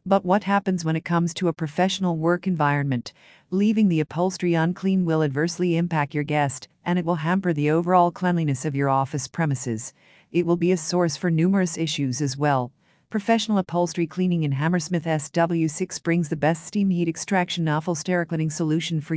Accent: American